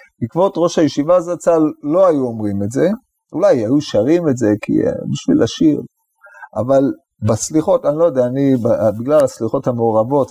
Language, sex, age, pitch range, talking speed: Hebrew, male, 30-49, 125-175 Hz, 150 wpm